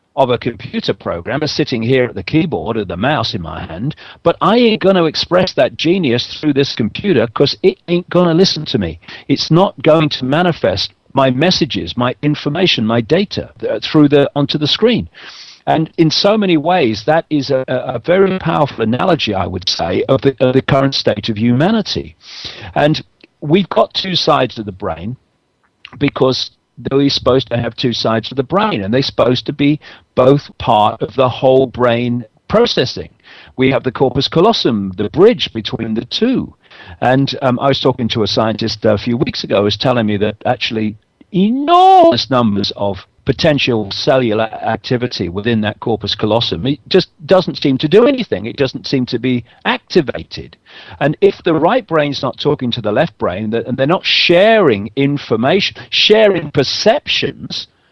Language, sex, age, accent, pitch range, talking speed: Italian, male, 50-69, British, 115-160 Hz, 180 wpm